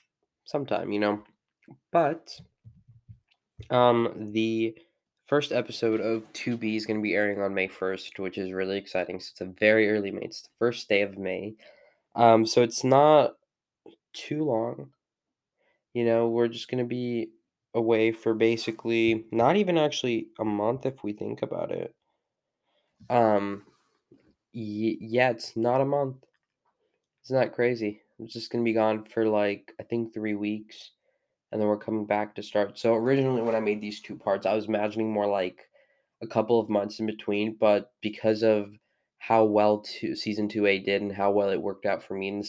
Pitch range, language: 105-115 Hz, English